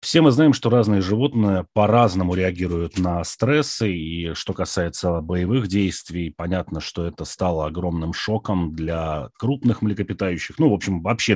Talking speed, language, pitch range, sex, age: 150 wpm, Russian, 90-115 Hz, male, 30-49